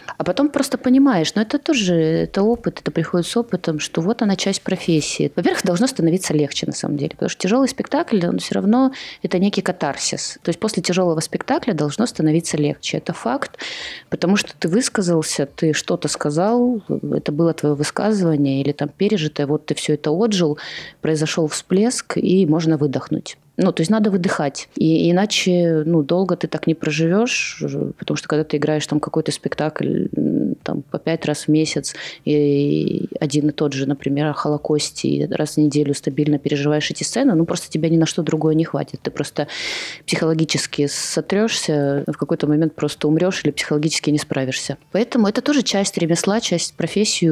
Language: Ukrainian